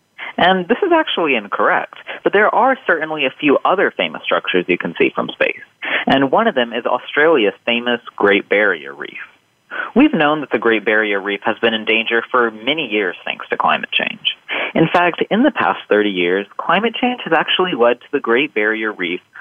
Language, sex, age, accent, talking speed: English, male, 30-49, American, 200 wpm